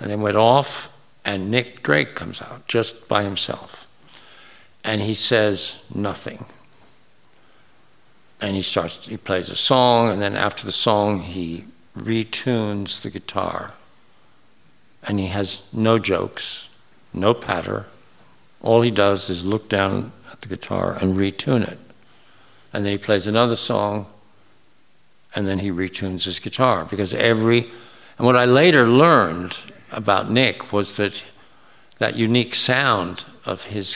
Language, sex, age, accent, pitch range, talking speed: English, male, 60-79, American, 100-115 Hz, 140 wpm